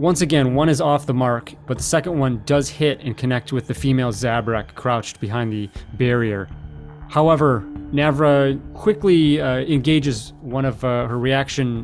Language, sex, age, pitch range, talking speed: English, male, 30-49, 115-140 Hz, 165 wpm